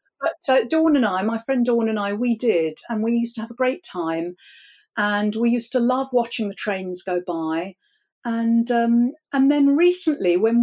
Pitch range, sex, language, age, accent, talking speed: 185-240 Hz, female, English, 50-69, British, 205 wpm